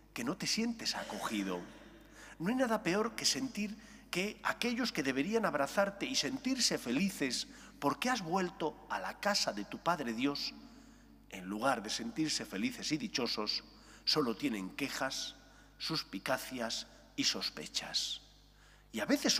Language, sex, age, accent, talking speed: English, male, 40-59, Spanish, 140 wpm